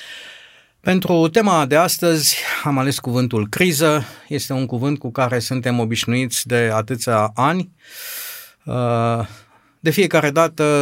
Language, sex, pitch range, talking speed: Romanian, male, 120-155 Hz, 115 wpm